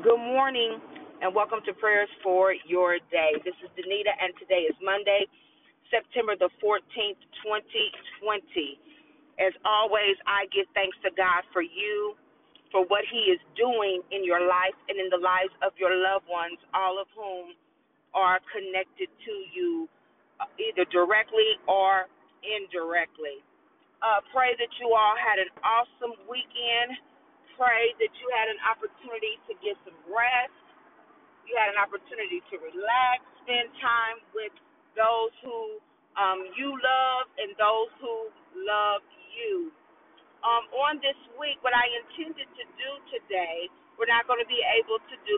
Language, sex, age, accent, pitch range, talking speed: English, female, 40-59, American, 200-325 Hz, 150 wpm